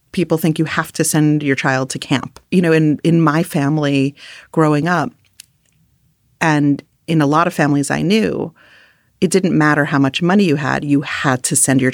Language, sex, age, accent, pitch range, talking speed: English, female, 30-49, American, 145-170 Hz, 195 wpm